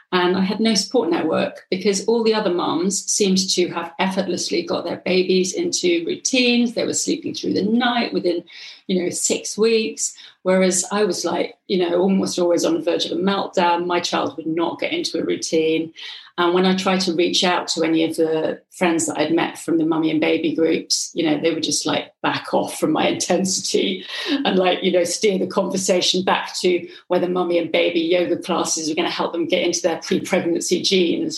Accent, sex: British, female